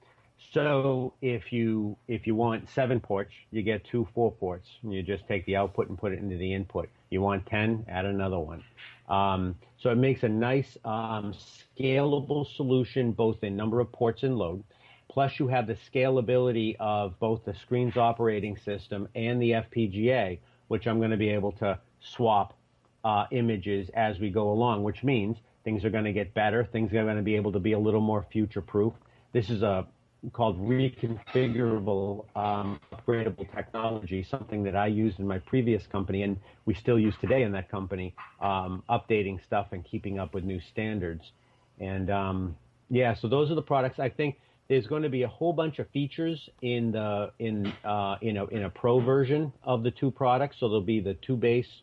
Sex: male